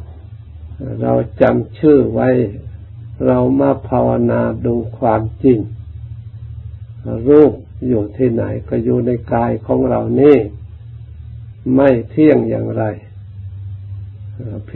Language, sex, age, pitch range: Thai, male, 60-79, 100-120 Hz